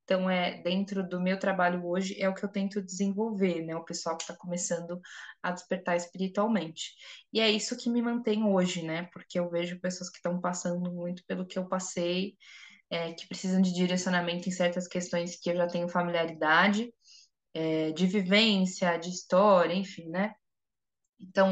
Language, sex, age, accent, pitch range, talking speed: Portuguese, female, 20-39, Brazilian, 175-200 Hz, 175 wpm